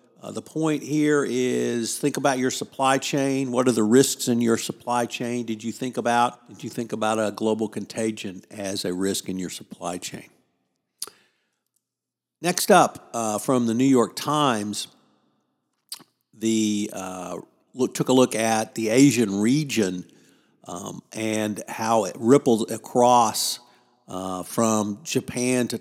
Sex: male